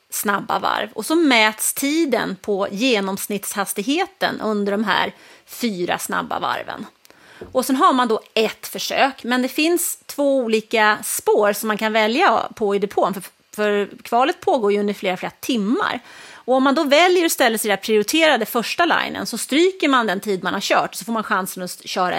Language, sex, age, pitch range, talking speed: English, female, 30-49, 205-285 Hz, 185 wpm